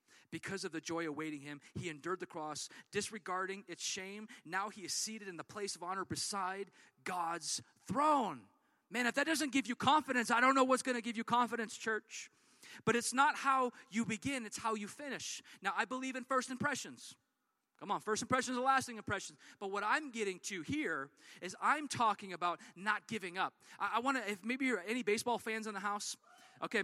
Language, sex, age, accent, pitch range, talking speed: English, male, 30-49, American, 190-255 Hz, 205 wpm